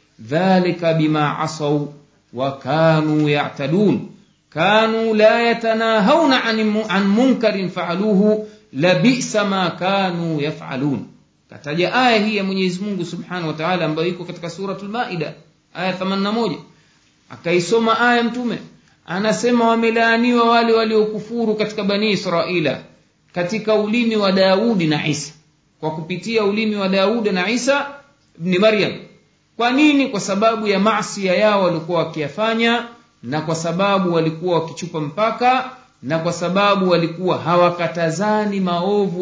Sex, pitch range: male, 160-215 Hz